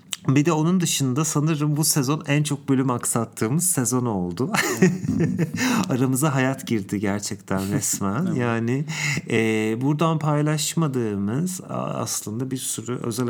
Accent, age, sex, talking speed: Turkish, 40-59, male, 115 wpm